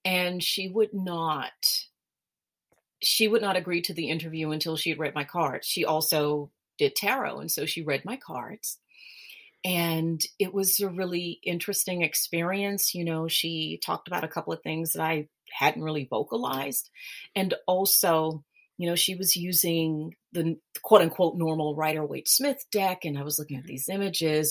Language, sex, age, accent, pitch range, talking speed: English, female, 30-49, American, 155-200 Hz, 165 wpm